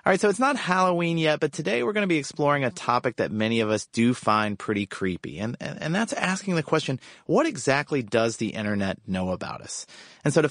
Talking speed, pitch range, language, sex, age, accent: 240 wpm, 105-145 Hz, English, male, 30-49, American